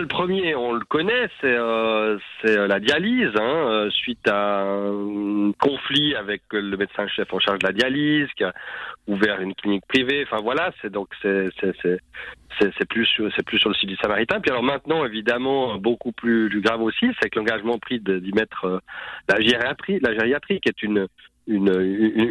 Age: 40-59